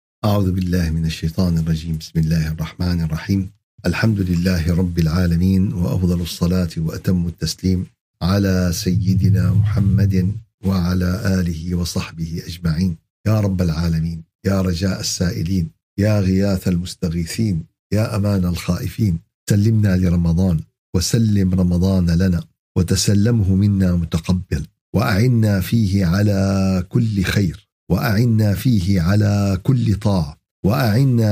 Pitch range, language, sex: 90-110 Hz, Arabic, male